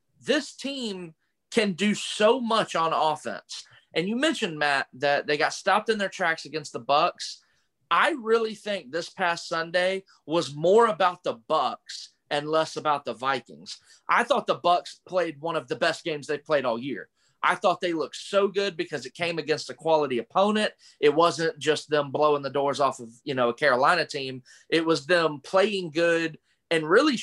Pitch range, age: 150-200 Hz, 30-49